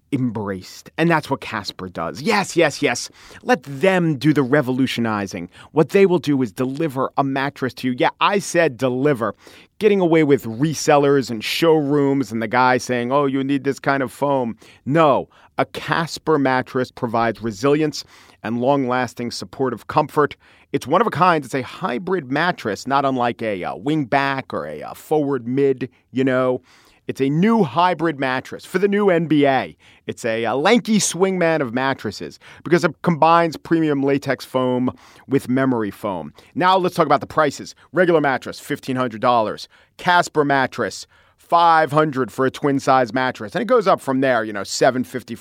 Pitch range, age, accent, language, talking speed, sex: 125-155 Hz, 40-59, American, English, 170 wpm, male